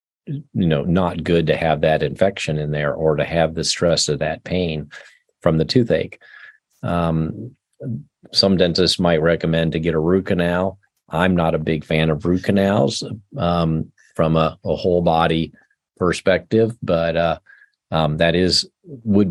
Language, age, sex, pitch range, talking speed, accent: English, 40-59, male, 80-100 Hz, 160 wpm, American